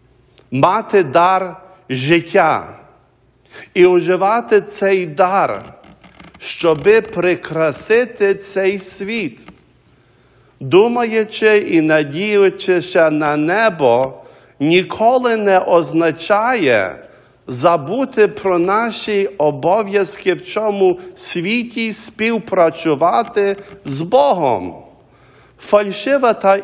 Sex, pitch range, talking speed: male, 170-205 Hz, 70 wpm